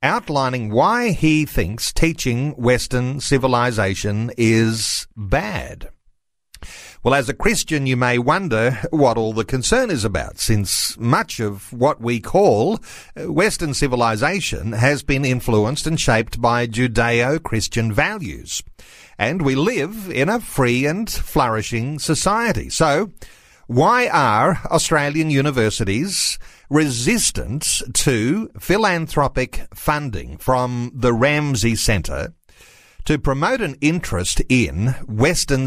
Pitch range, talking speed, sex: 115-150 Hz, 110 wpm, male